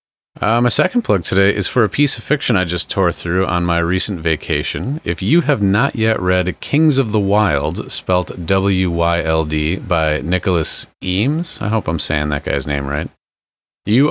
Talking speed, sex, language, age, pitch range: 185 wpm, male, English, 30-49, 85-115 Hz